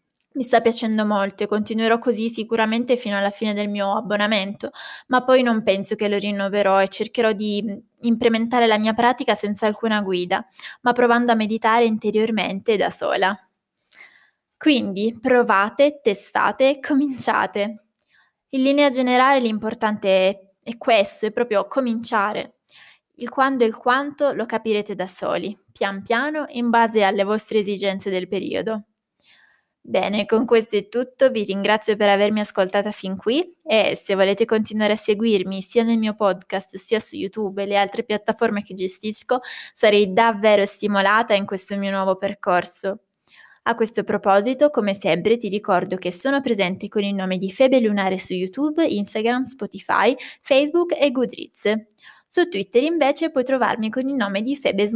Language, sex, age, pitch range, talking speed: Italian, female, 20-39, 200-240 Hz, 155 wpm